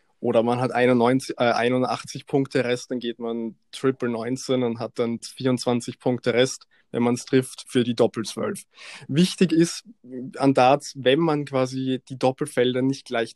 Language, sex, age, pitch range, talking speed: German, male, 20-39, 115-130 Hz, 165 wpm